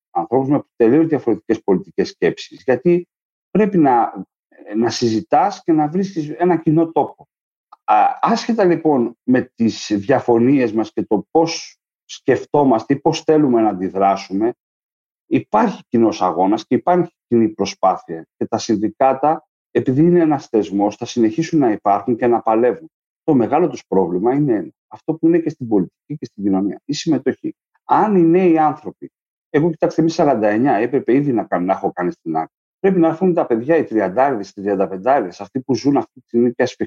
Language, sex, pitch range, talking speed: Greek, male, 115-170 Hz, 170 wpm